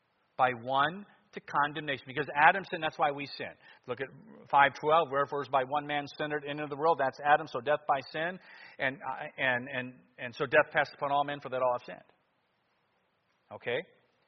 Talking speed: 195 wpm